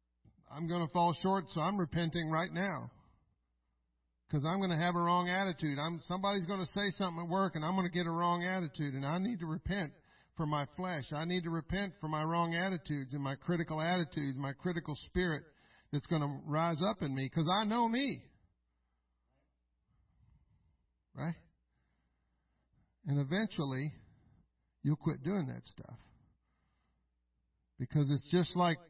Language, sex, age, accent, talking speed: English, male, 50-69, American, 165 wpm